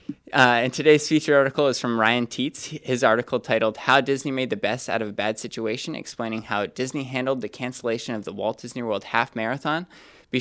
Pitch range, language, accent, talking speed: 115-140 Hz, English, American, 210 wpm